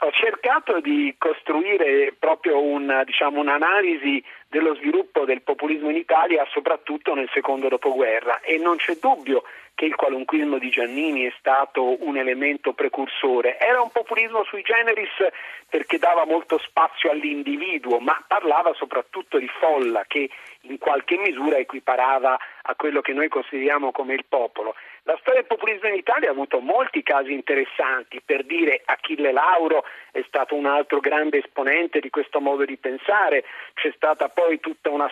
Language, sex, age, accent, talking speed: Italian, male, 40-59, native, 155 wpm